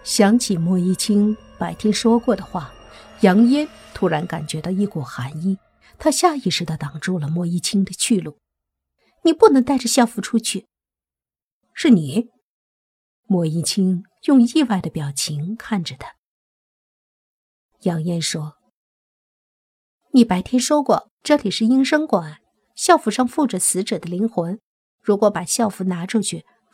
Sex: female